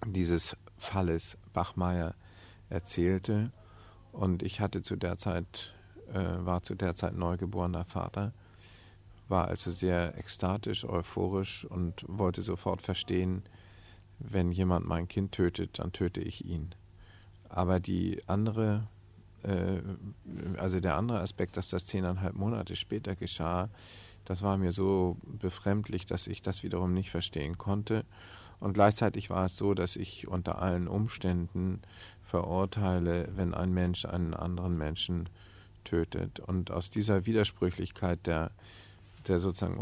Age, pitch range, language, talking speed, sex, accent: 50-69, 90-100 Hz, German, 130 wpm, male, German